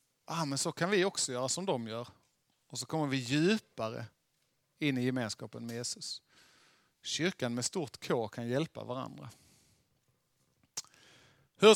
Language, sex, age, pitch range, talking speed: Swedish, male, 30-49, 135-180 Hz, 150 wpm